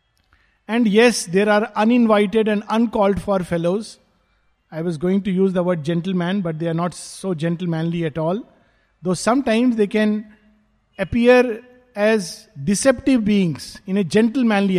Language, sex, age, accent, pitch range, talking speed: English, male, 50-69, Indian, 175-230 Hz, 145 wpm